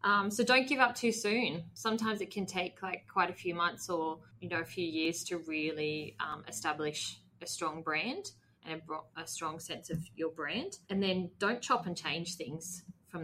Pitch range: 160-185 Hz